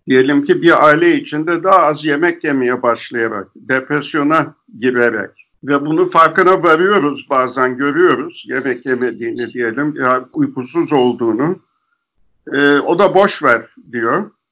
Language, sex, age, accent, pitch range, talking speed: Turkish, male, 50-69, native, 135-165 Hz, 125 wpm